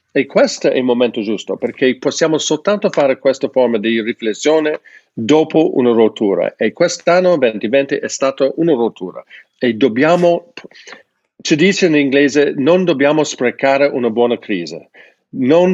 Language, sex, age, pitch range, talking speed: Italian, male, 50-69, 120-155 Hz, 140 wpm